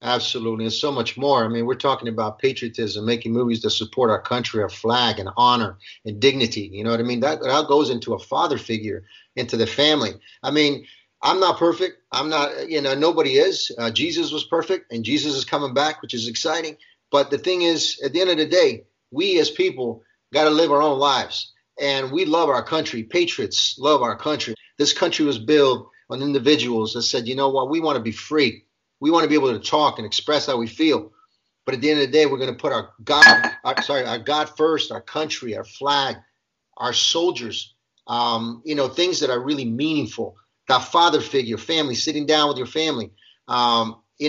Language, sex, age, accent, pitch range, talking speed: English, male, 30-49, American, 120-155 Hz, 215 wpm